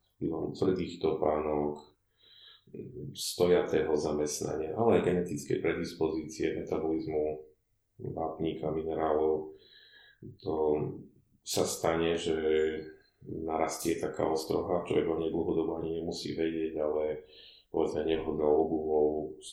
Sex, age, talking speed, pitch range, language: male, 30-49, 90 wpm, 75-80 Hz, Slovak